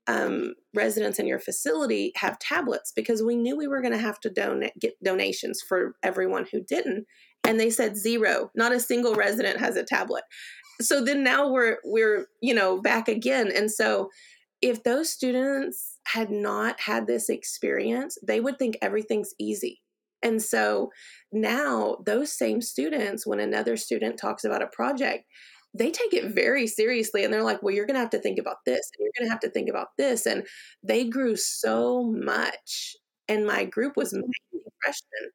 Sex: female